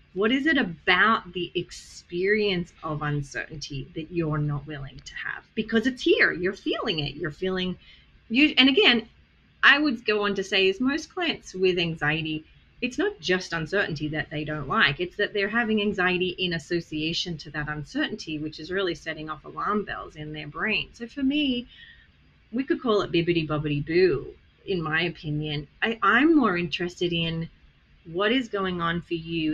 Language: English